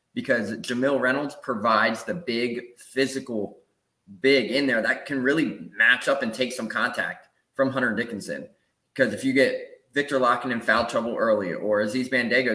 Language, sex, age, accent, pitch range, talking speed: English, male, 20-39, American, 115-135 Hz, 165 wpm